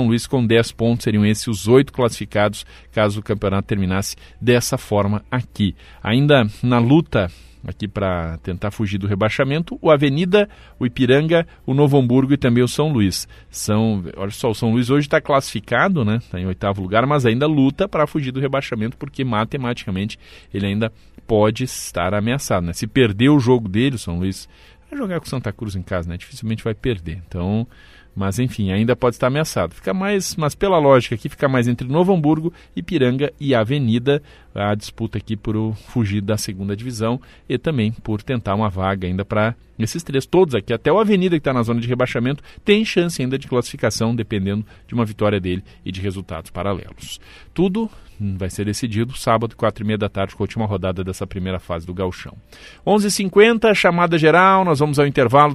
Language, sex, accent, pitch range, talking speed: Portuguese, male, Brazilian, 100-135 Hz, 195 wpm